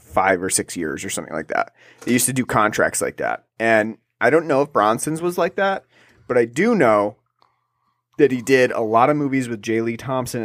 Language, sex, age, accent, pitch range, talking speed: English, male, 30-49, American, 105-135 Hz, 225 wpm